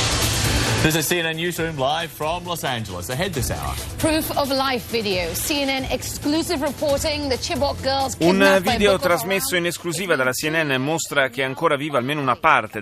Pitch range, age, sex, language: 115-155 Hz, 30-49, male, Italian